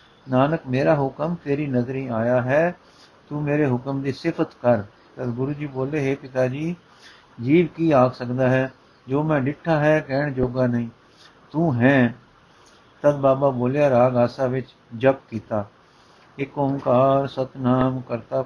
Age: 60-79